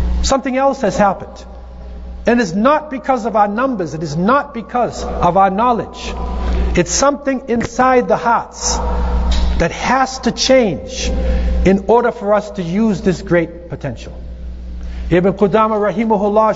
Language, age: English, 50-69